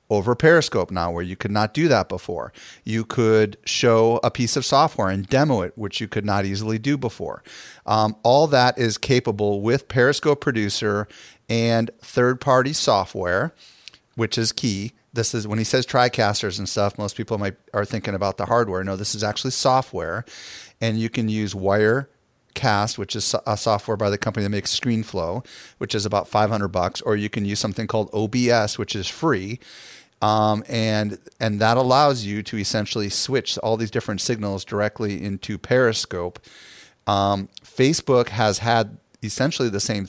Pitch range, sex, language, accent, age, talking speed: 100-120 Hz, male, English, American, 40-59, 175 wpm